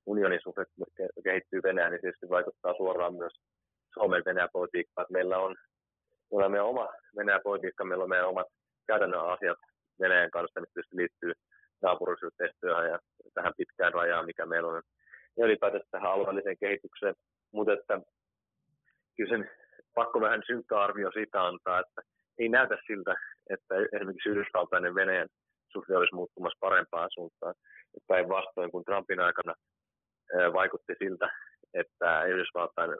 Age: 30-49